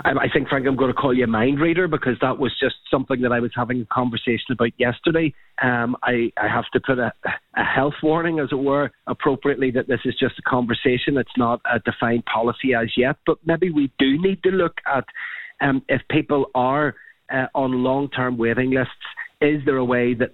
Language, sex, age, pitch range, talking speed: English, male, 30-49, 120-140 Hz, 215 wpm